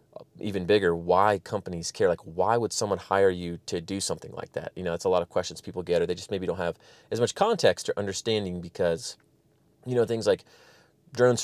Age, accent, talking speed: 30-49, American, 220 wpm